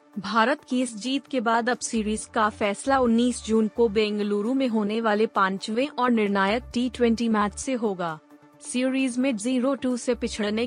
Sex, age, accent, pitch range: female, 30-49, native, 210-250 Hz